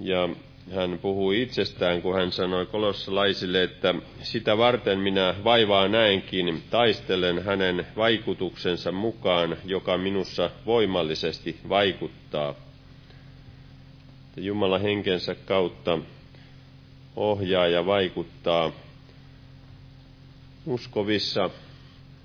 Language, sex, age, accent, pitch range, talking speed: Finnish, male, 40-59, native, 90-135 Hz, 80 wpm